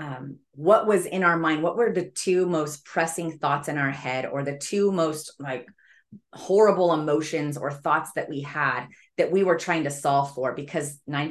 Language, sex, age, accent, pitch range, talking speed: English, female, 30-49, American, 145-175 Hz, 195 wpm